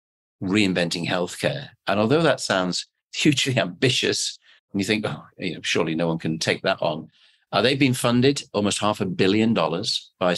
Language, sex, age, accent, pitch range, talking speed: English, male, 40-59, British, 90-110 Hz, 180 wpm